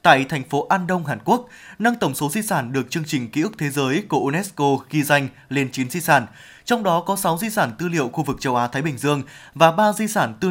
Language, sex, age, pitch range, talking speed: Vietnamese, male, 20-39, 135-180 Hz, 265 wpm